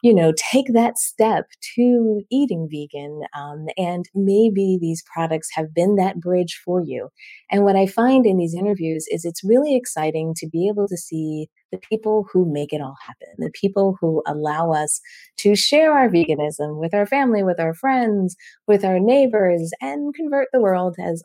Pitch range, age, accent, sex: 165-215 Hz, 30-49, American, female